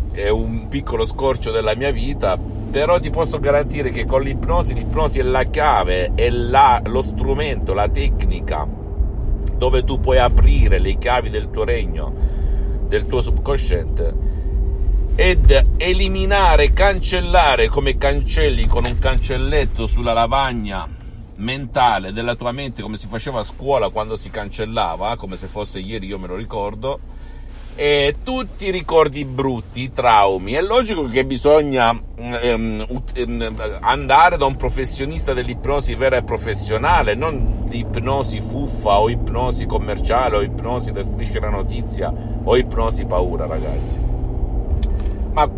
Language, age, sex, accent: Italian, 50-69, male, native